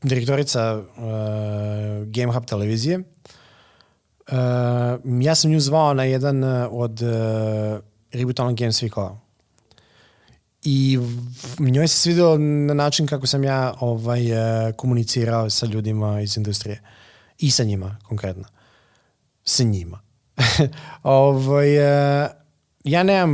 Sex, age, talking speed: male, 30-49, 115 wpm